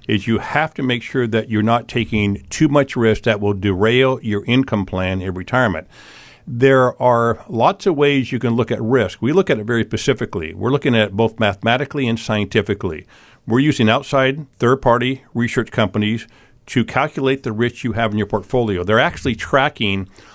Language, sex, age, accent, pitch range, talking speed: English, male, 50-69, American, 115-140 Hz, 185 wpm